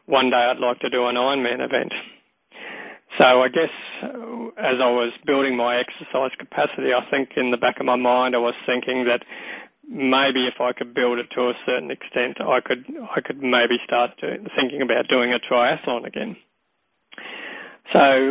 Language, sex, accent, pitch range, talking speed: English, male, Australian, 120-130 Hz, 180 wpm